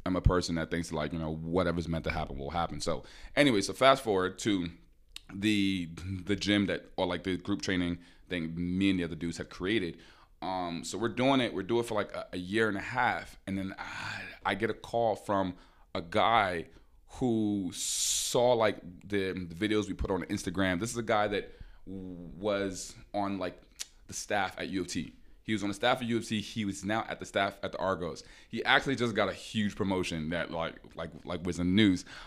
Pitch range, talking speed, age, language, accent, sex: 85-105 Hz, 220 wpm, 30-49, English, American, male